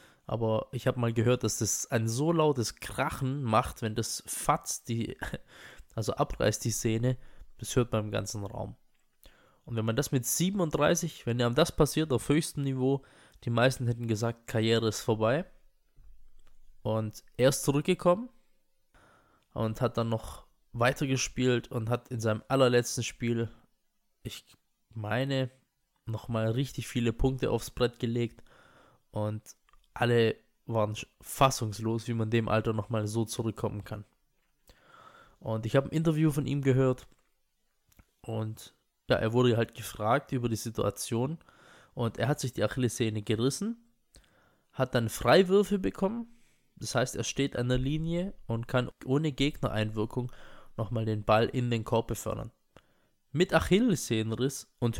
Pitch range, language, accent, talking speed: 110-135 Hz, English, German, 145 wpm